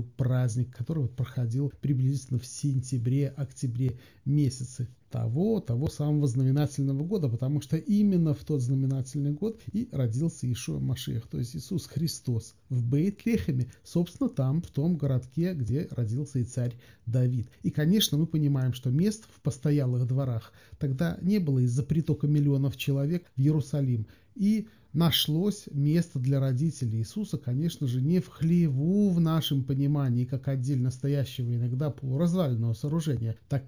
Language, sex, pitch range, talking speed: Russian, male, 125-160 Hz, 135 wpm